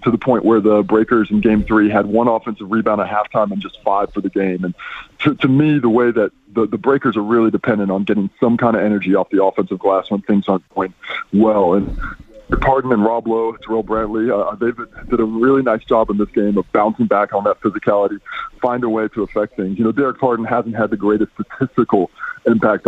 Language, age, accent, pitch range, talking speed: English, 20-39, American, 105-120 Hz, 230 wpm